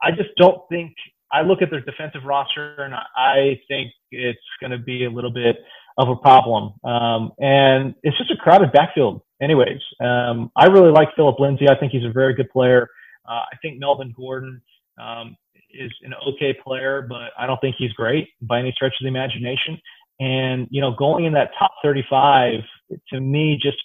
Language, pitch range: English, 125-145 Hz